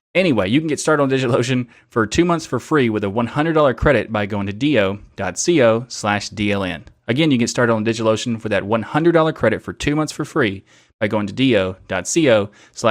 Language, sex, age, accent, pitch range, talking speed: English, male, 30-49, American, 100-125 Hz, 195 wpm